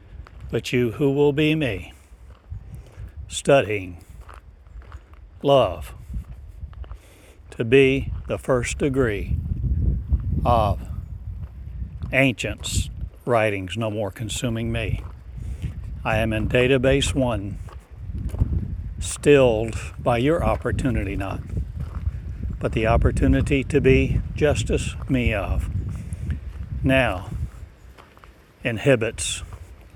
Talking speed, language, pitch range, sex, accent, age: 80 wpm, English, 90-120 Hz, male, American, 60-79